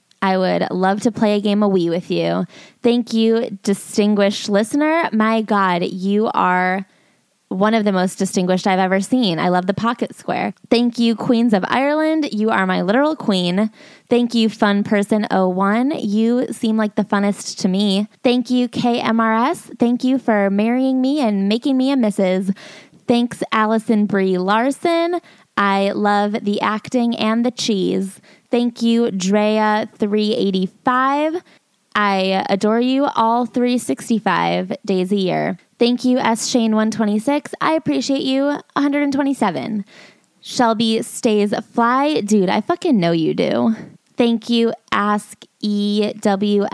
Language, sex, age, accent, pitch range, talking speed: English, female, 20-39, American, 200-245 Hz, 160 wpm